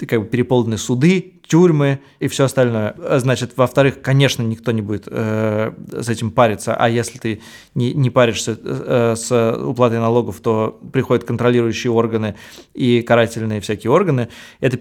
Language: Russian